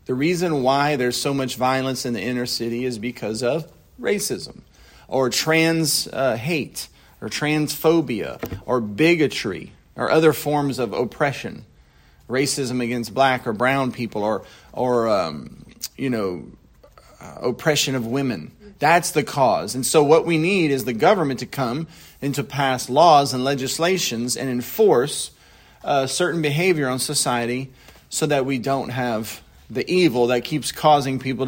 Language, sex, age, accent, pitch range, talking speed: English, male, 40-59, American, 120-150 Hz, 150 wpm